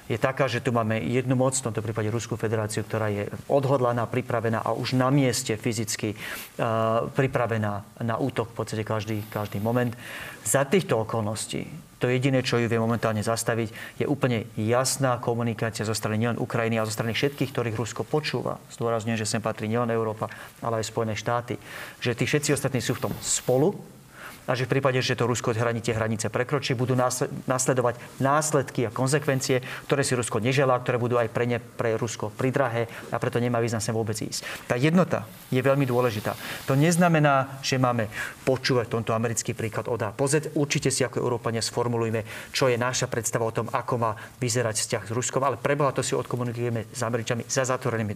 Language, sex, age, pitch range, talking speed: Slovak, male, 30-49, 115-130 Hz, 185 wpm